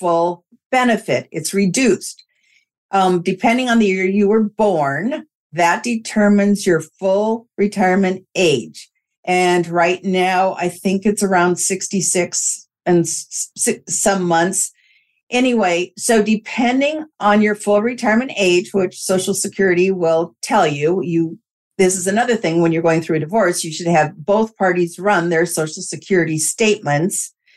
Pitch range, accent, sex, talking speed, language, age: 175-215 Hz, American, female, 140 wpm, English, 50-69